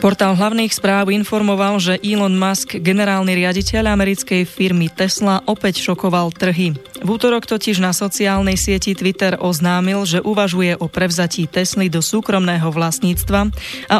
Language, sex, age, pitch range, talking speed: Slovak, female, 20-39, 175-205 Hz, 135 wpm